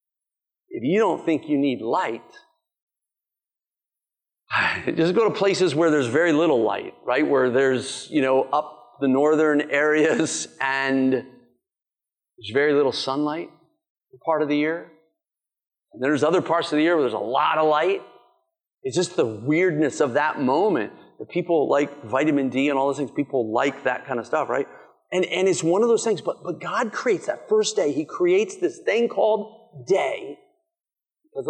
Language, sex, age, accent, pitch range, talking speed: English, male, 40-59, American, 150-245 Hz, 175 wpm